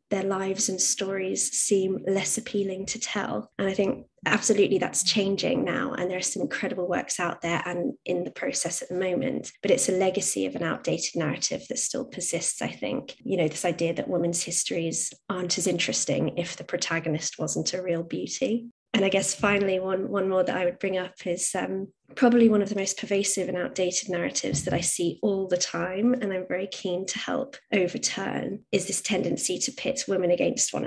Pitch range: 180-210 Hz